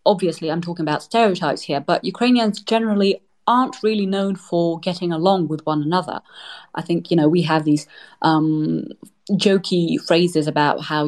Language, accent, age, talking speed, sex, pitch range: English, British, 30-49, 160 wpm, female, 155-195 Hz